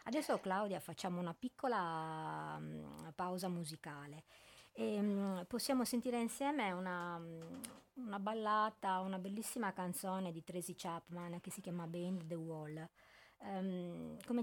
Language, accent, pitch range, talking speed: Italian, native, 175-215 Hz, 130 wpm